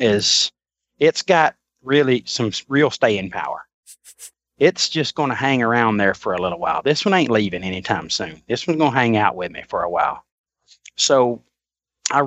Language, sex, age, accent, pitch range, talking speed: English, male, 30-49, American, 110-140 Hz, 185 wpm